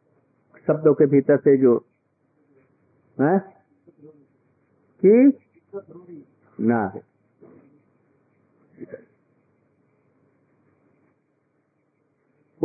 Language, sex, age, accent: Hindi, male, 50-69, native